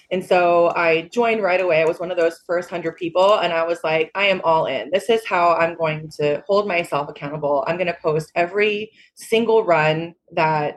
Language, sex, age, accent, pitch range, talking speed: English, female, 20-39, American, 160-195 Hz, 215 wpm